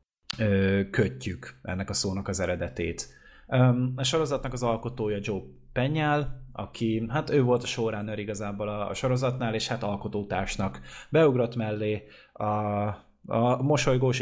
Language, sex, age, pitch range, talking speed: Hungarian, male, 20-39, 95-115 Hz, 120 wpm